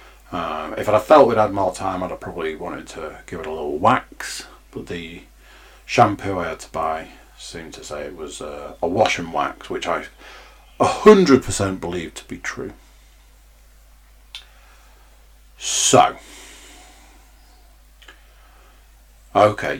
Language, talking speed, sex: English, 135 wpm, male